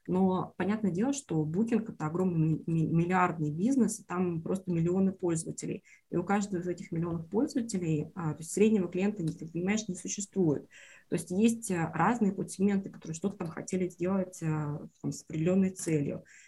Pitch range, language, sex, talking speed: 165-205 Hz, Russian, female, 145 wpm